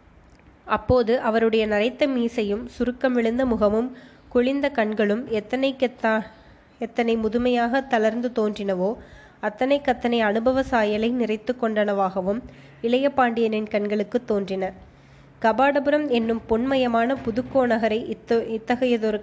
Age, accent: 20-39, native